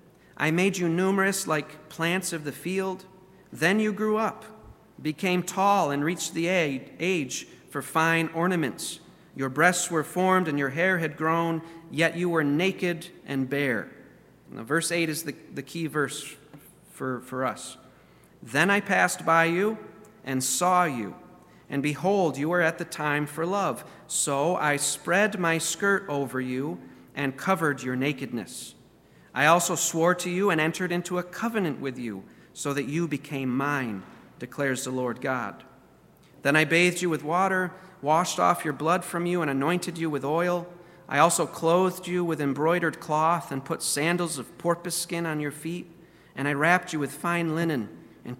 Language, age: English, 40-59